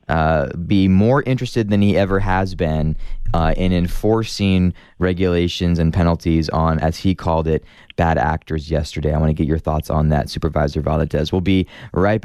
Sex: male